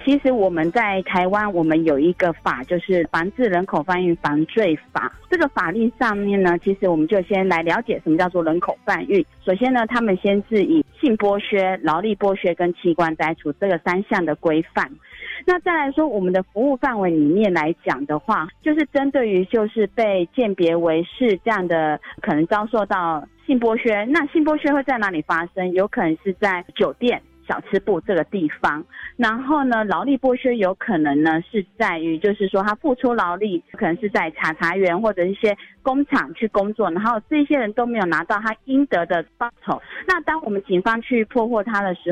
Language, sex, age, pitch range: Chinese, female, 30-49, 175-230 Hz